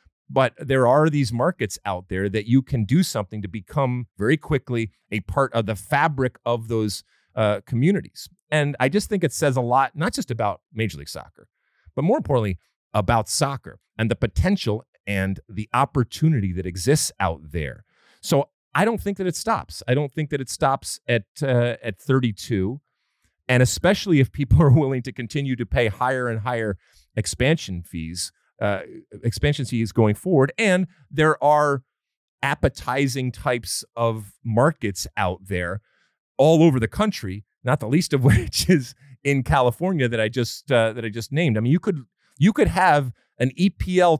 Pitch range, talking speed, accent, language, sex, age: 105-145 Hz, 175 wpm, American, English, male, 40-59